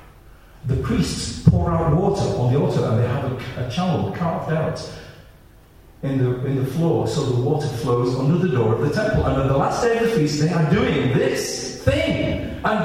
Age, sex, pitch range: 40-59, male, 135-210 Hz